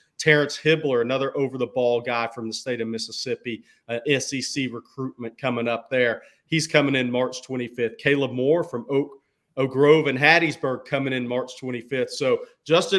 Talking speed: 160 wpm